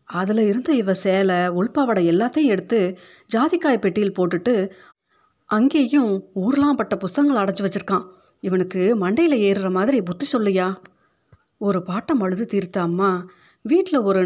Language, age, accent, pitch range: Tamil, 30-49, native, 180-215 Hz